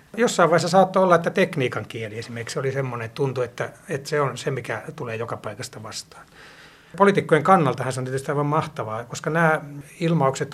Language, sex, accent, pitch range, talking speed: Finnish, male, native, 130-155 Hz, 180 wpm